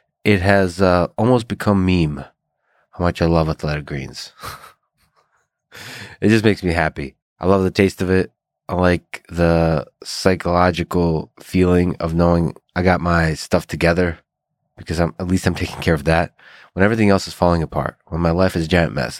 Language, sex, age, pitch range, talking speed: English, male, 20-39, 80-95 Hz, 180 wpm